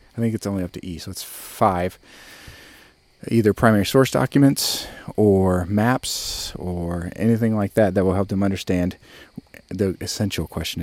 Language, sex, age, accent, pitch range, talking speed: English, male, 40-59, American, 90-110 Hz, 155 wpm